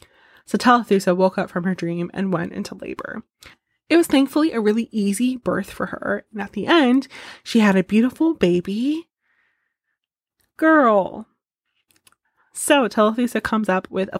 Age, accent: 20-39, American